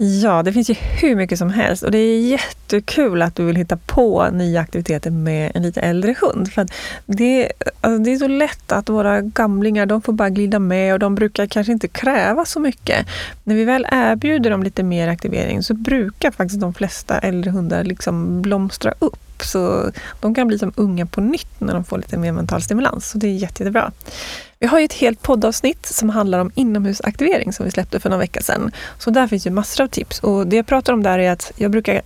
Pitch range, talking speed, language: 180-225 Hz, 225 wpm, Swedish